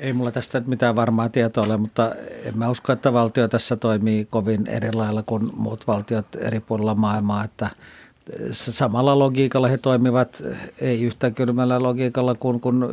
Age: 60-79